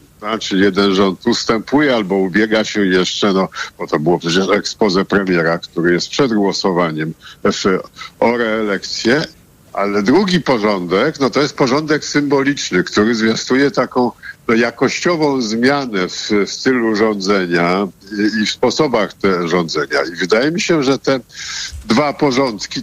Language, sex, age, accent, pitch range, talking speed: Polish, male, 50-69, native, 110-140 Hz, 140 wpm